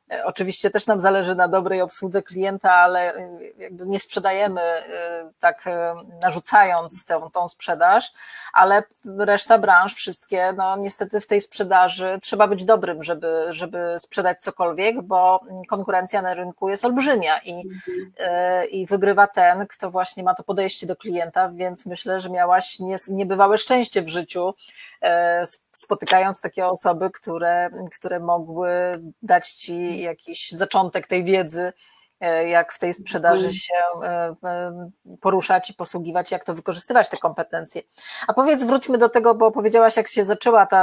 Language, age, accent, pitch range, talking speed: Polish, 30-49, native, 180-205 Hz, 135 wpm